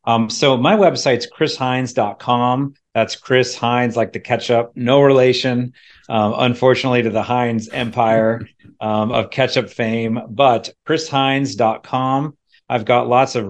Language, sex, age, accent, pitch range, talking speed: English, male, 40-59, American, 105-125 Hz, 140 wpm